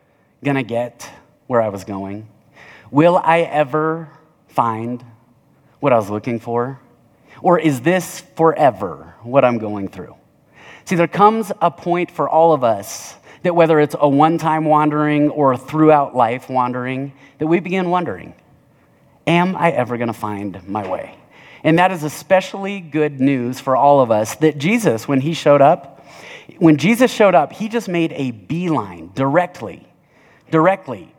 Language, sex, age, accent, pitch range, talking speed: English, male, 30-49, American, 130-175 Hz, 155 wpm